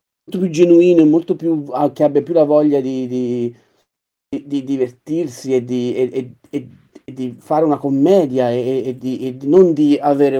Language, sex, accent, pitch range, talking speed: Italian, male, native, 125-155 Hz, 190 wpm